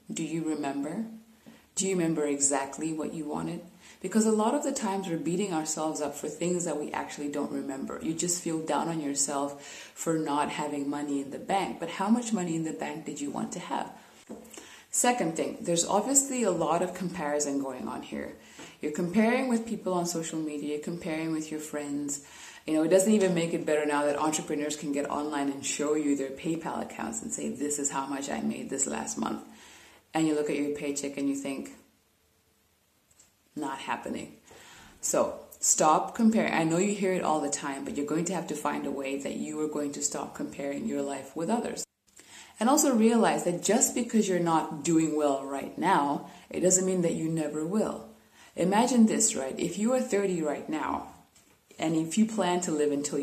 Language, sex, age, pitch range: English, female, 20-39, 145-190 Hz